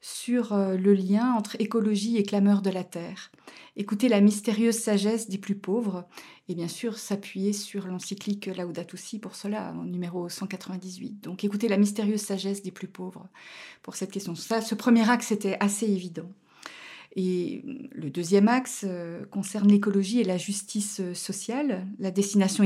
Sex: female